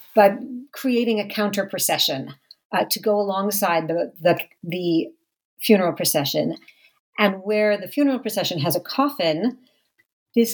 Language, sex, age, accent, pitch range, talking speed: English, female, 50-69, American, 175-225 Hz, 130 wpm